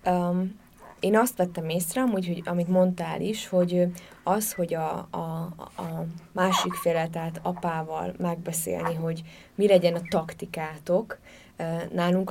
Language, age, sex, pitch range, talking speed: Hungarian, 20-39, female, 170-195 Hz, 115 wpm